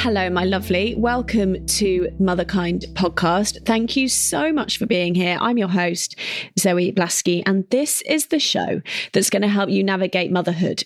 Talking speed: 170 wpm